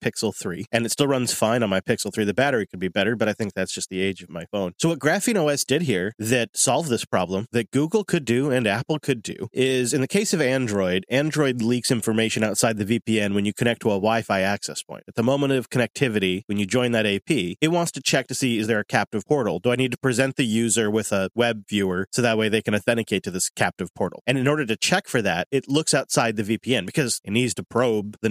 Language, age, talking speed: English, 30-49, 260 wpm